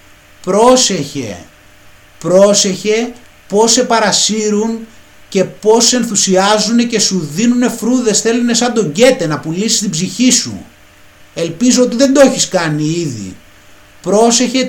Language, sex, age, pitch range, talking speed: Greek, male, 30-49, 150-215 Hz, 125 wpm